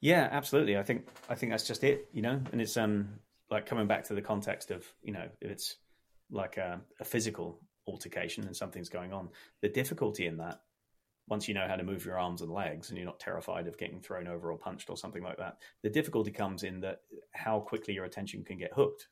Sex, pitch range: male, 95-110 Hz